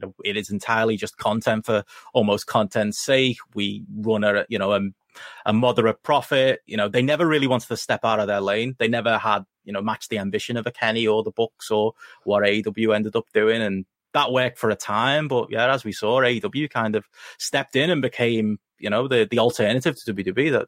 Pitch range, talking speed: 105-145 Hz, 220 wpm